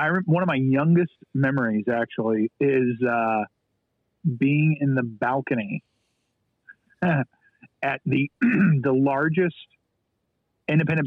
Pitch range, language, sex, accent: 120-145 Hz, English, male, American